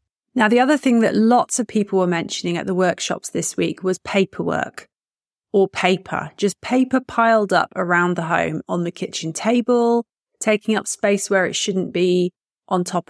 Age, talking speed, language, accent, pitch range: 30-49, 180 wpm, English, British, 180-225 Hz